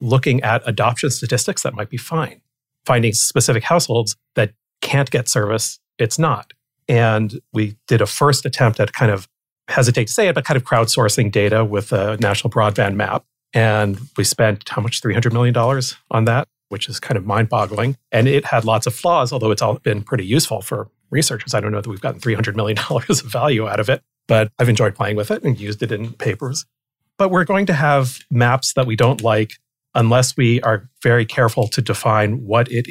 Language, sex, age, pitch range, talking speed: English, male, 40-59, 110-135 Hz, 200 wpm